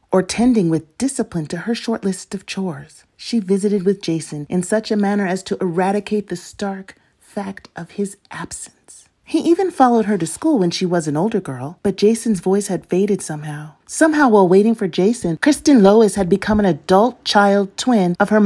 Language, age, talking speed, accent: English, 40-59, 195 wpm, American